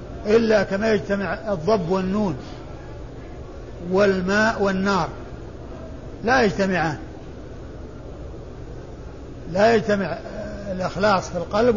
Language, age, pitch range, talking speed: Arabic, 50-69, 195-225 Hz, 70 wpm